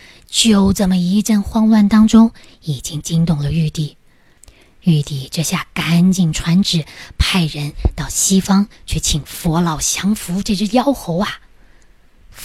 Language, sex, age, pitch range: Chinese, female, 20-39, 160-200 Hz